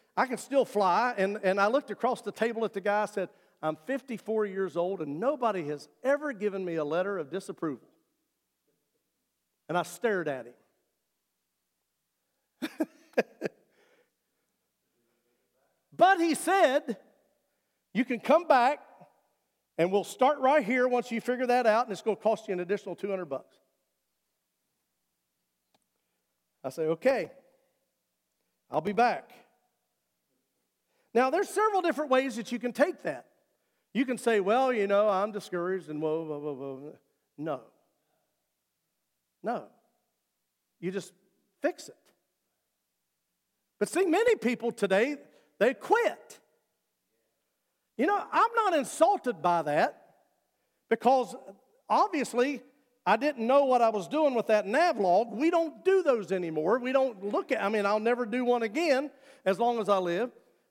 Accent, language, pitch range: American, English, 190-270 Hz